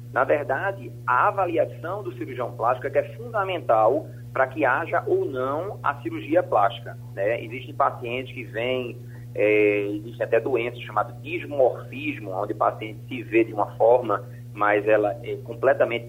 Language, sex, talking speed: Portuguese, male, 155 wpm